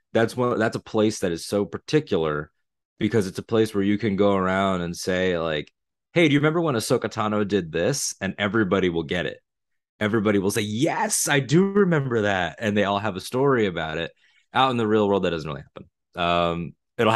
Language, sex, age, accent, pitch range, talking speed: English, male, 20-39, American, 90-105 Hz, 215 wpm